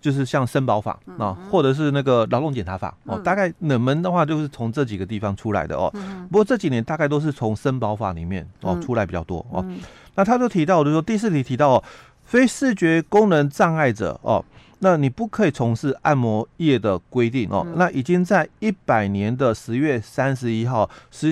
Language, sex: Chinese, male